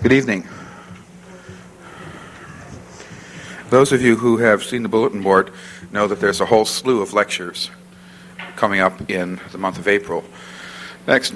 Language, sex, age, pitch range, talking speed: English, male, 50-69, 90-105 Hz, 145 wpm